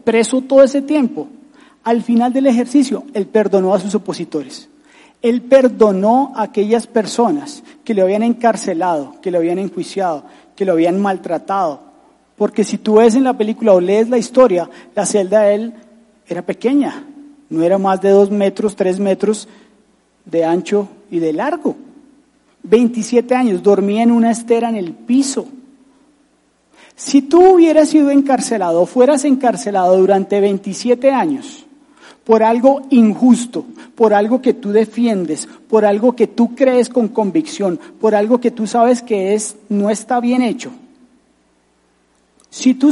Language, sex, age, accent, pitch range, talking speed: Spanish, male, 40-59, Colombian, 200-270 Hz, 150 wpm